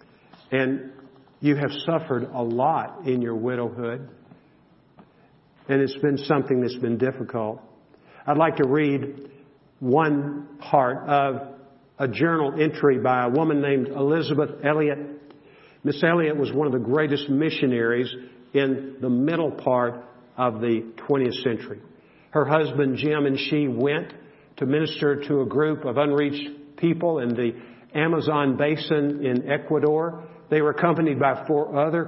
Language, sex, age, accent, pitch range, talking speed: English, male, 50-69, American, 135-155 Hz, 140 wpm